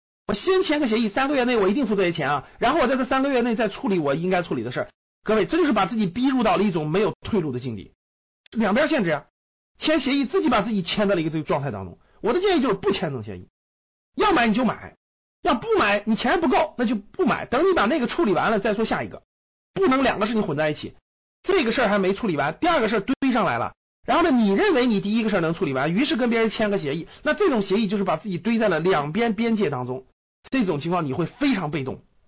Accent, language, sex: native, Chinese, male